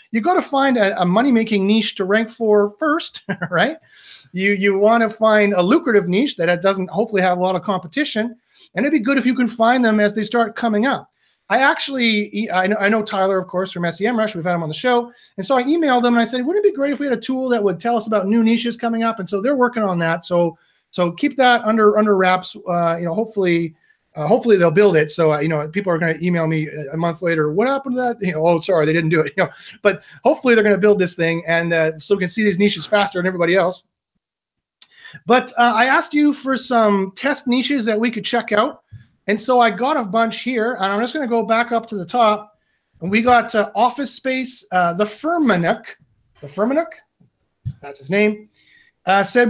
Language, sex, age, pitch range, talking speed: English, male, 30-49, 185-245 Hz, 245 wpm